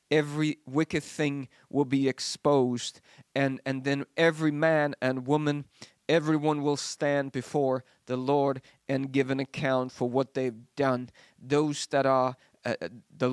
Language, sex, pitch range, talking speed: English, male, 130-150 Hz, 145 wpm